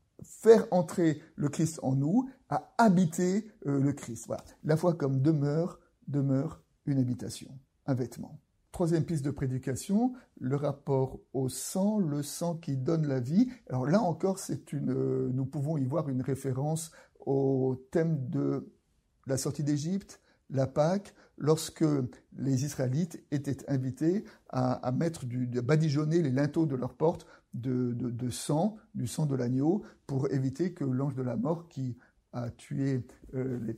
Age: 50-69